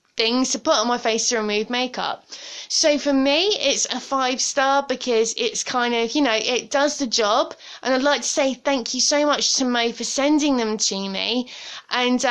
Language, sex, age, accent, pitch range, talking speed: English, female, 20-39, British, 235-290 Hz, 210 wpm